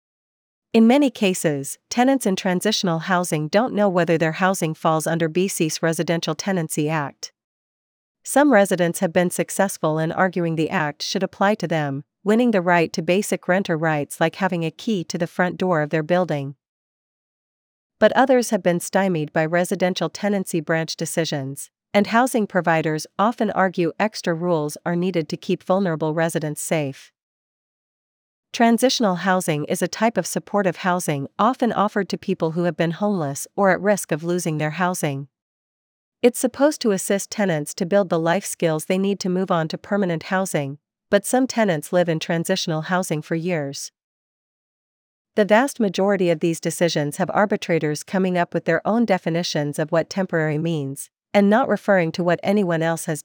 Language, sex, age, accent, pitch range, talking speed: English, female, 40-59, American, 160-200 Hz, 170 wpm